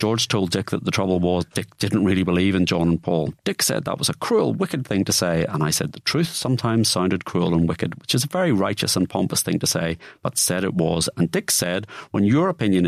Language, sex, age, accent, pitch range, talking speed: English, male, 40-59, British, 90-110 Hz, 255 wpm